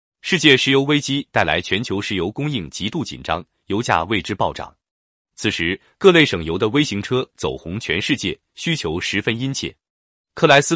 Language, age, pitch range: Chinese, 30-49, 90-145 Hz